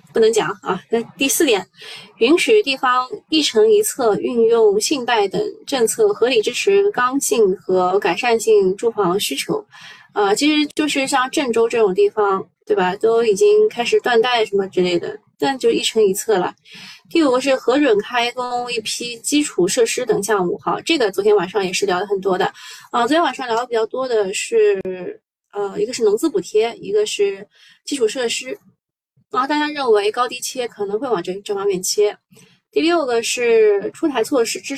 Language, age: Chinese, 20-39